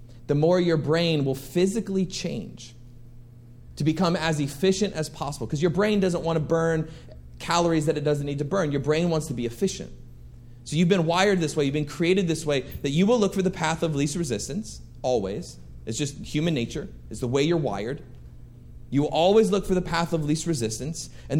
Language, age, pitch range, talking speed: English, 30-49, 135-165 Hz, 210 wpm